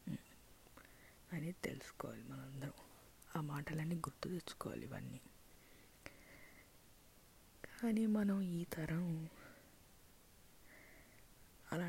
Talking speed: 65 wpm